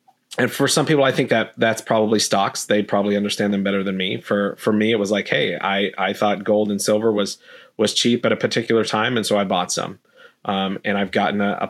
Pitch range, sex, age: 100-110 Hz, male, 30-49